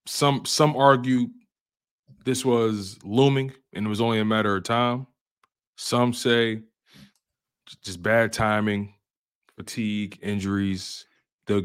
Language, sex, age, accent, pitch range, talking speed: English, male, 20-39, American, 95-115 Hz, 115 wpm